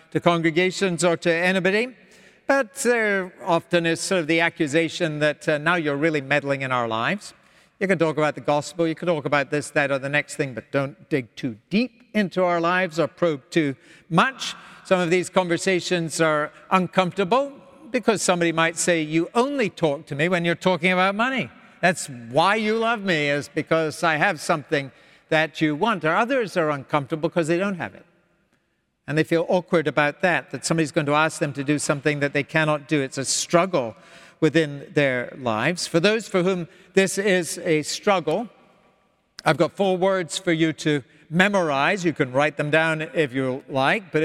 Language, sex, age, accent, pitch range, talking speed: English, male, 60-79, American, 155-185 Hz, 190 wpm